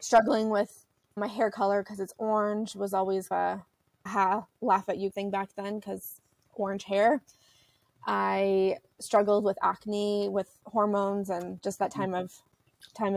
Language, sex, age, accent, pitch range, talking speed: English, female, 20-39, American, 190-210 Hz, 150 wpm